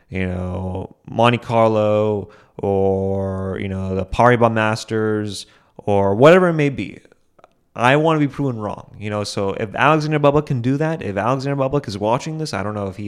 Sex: male